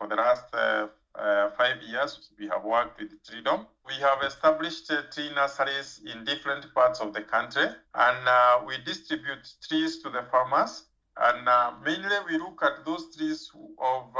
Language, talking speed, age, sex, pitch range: English, 170 wpm, 50-69, male, 120-155 Hz